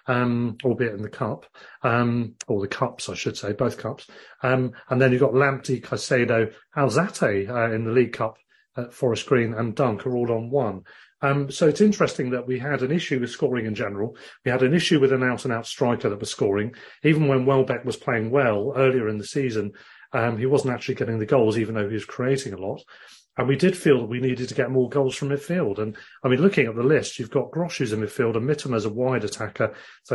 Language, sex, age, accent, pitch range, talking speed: English, male, 40-59, British, 115-140 Hz, 230 wpm